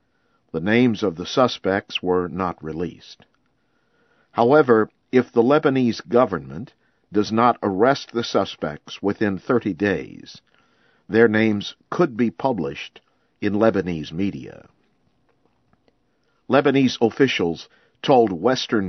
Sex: male